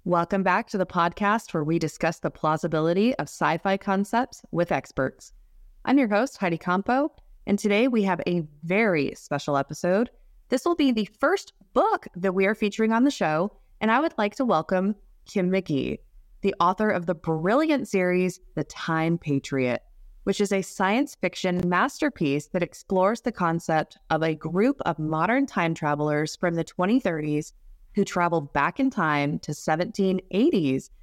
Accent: American